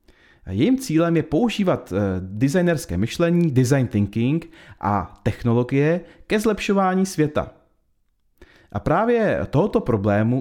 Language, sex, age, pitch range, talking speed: Czech, male, 30-49, 100-155 Hz, 100 wpm